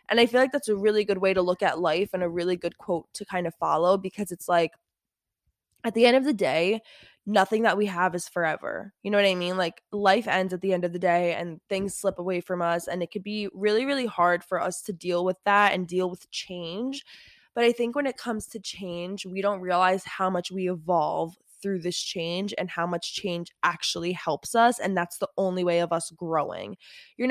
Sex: female